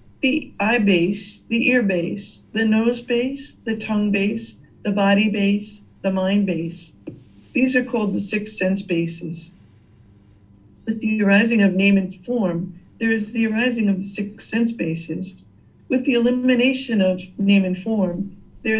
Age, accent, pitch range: 50-69, American, 185-225 Hz